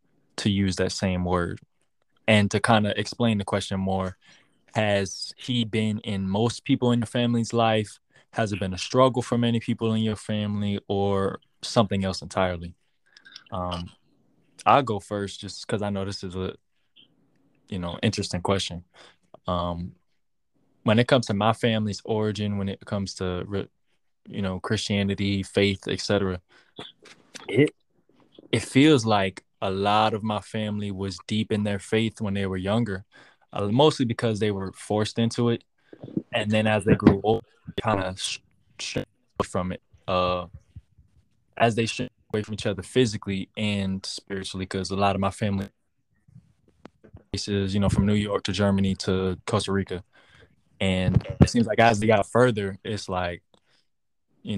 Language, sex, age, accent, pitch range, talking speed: English, male, 20-39, American, 95-115 Hz, 160 wpm